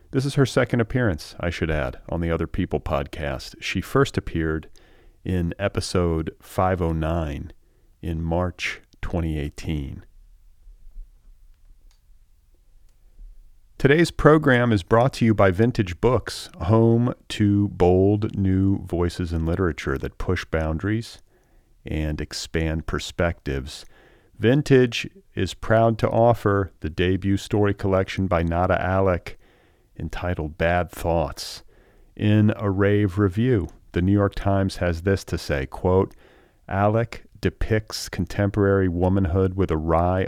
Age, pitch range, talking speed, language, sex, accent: 40-59, 80-100 Hz, 120 wpm, English, male, American